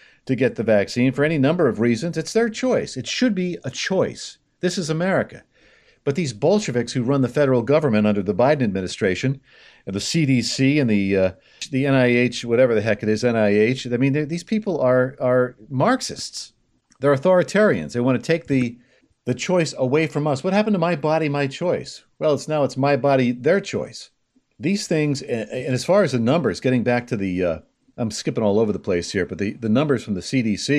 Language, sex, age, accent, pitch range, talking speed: English, male, 50-69, American, 120-155 Hz, 210 wpm